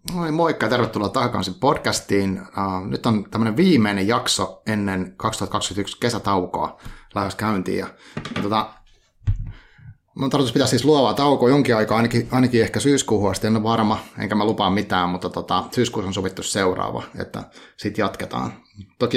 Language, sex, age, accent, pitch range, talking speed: Finnish, male, 30-49, native, 100-120 Hz, 145 wpm